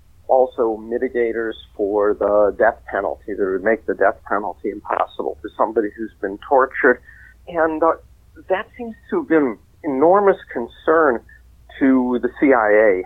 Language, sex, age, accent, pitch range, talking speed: English, male, 50-69, American, 110-150 Hz, 140 wpm